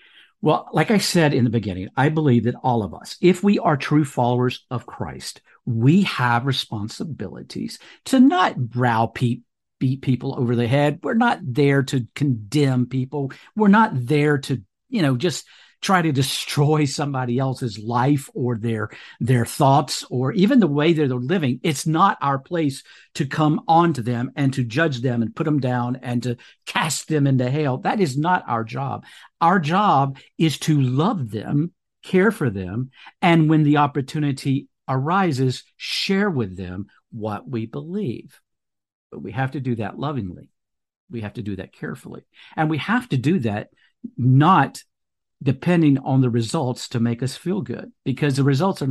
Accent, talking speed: American, 170 wpm